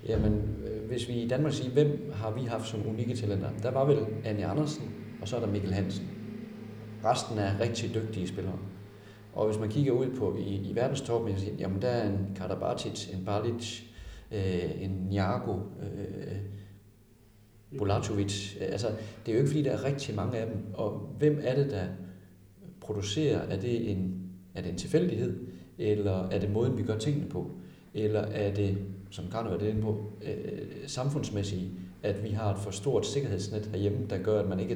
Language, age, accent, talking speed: Danish, 40-59, native, 185 wpm